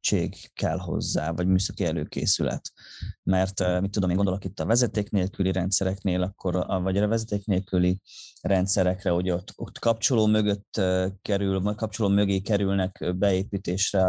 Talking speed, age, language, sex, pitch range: 135 wpm, 20-39, Hungarian, male, 95-105 Hz